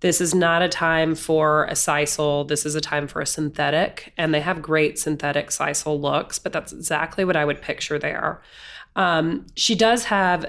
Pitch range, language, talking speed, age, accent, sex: 155-190 Hz, English, 195 wpm, 30-49, American, female